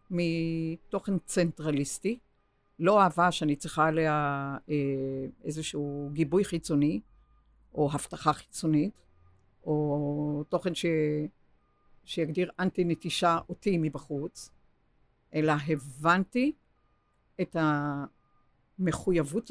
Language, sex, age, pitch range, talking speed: Hebrew, female, 60-79, 145-175 Hz, 75 wpm